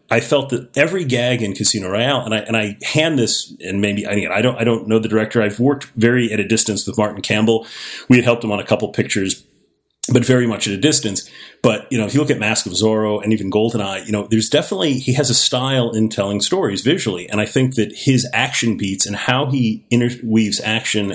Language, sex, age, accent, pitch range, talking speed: English, male, 40-59, American, 105-125 Hz, 240 wpm